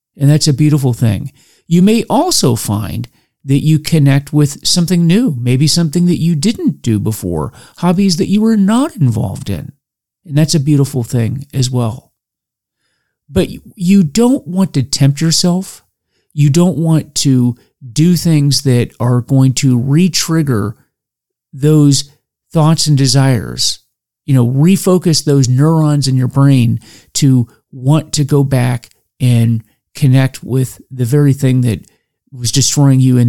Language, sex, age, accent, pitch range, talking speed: English, male, 40-59, American, 125-160 Hz, 150 wpm